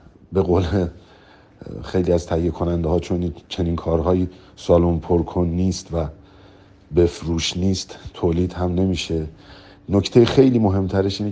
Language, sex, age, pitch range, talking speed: Persian, male, 50-69, 80-95 Hz, 120 wpm